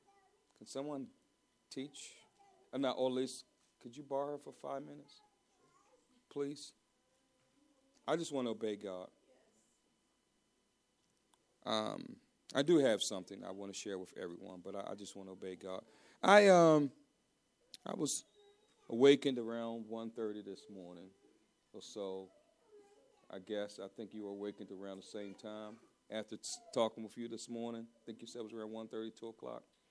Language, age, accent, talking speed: English, 40-59, American, 160 wpm